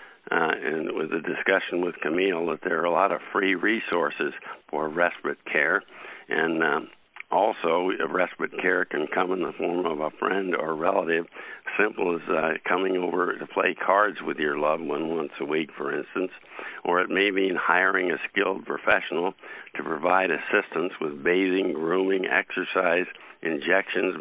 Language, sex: English, male